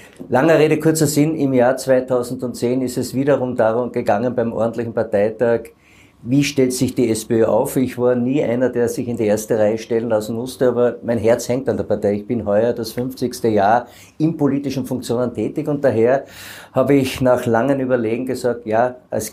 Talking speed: 190 wpm